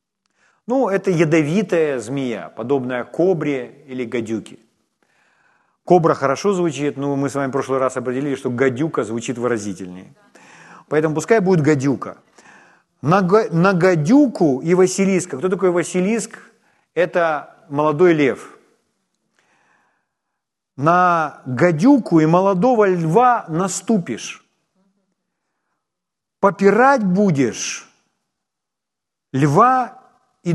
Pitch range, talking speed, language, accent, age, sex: 135-195 Hz, 90 wpm, Ukrainian, native, 40-59, male